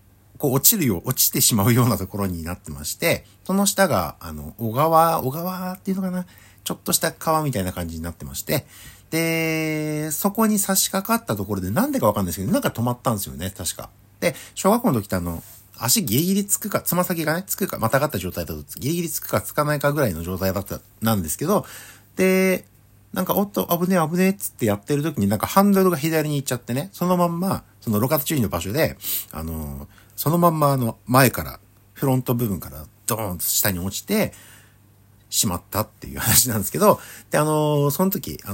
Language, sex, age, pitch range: Japanese, male, 60-79, 100-160 Hz